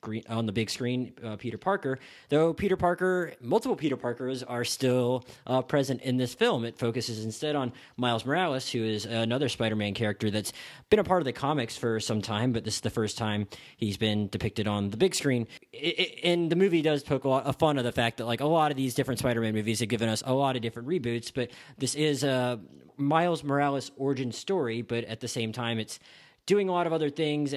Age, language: 30-49, English